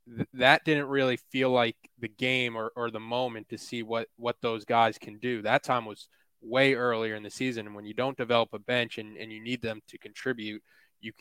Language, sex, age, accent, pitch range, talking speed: English, male, 20-39, American, 110-125 Hz, 230 wpm